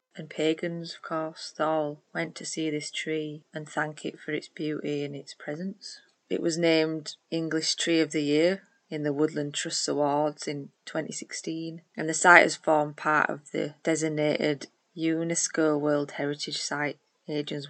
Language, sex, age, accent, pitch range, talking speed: English, female, 30-49, British, 150-165 Hz, 165 wpm